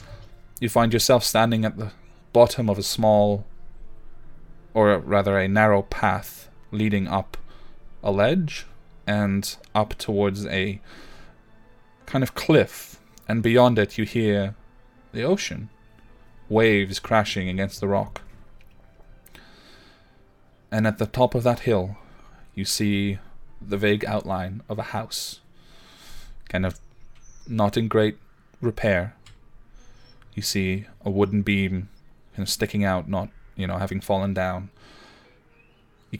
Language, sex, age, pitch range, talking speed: English, male, 20-39, 95-110 Hz, 125 wpm